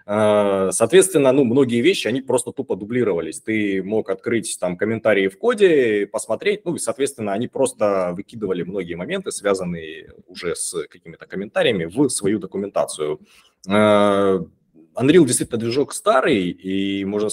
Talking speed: 135 wpm